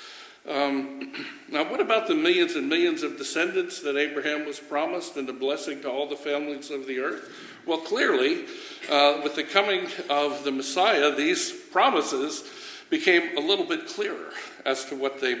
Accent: American